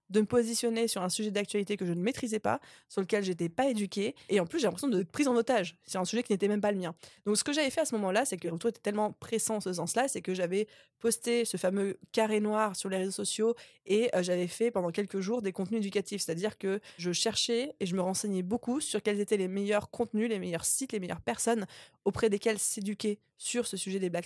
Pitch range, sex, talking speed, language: 190-225 Hz, female, 255 wpm, French